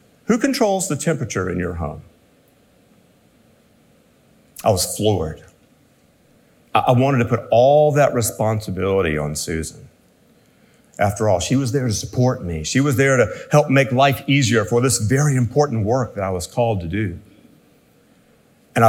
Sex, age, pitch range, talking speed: male, 50-69, 105-135 Hz, 150 wpm